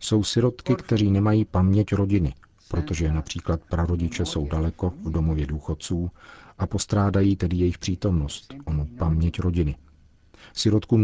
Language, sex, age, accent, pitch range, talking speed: Czech, male, 40-59, native, 80-100 Hz, 125 wpm